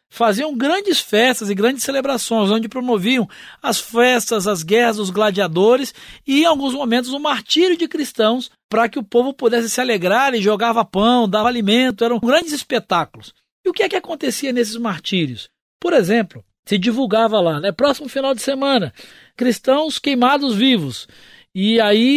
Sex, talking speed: male, 165 wpm